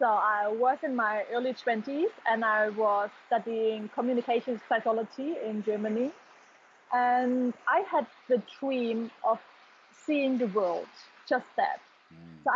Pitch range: 225-290 Hz